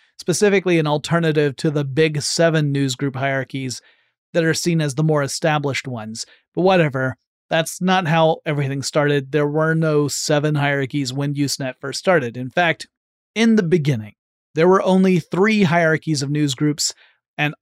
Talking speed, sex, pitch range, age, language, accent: 155 wpm, male, 145-170 Hz, 30-49, English, American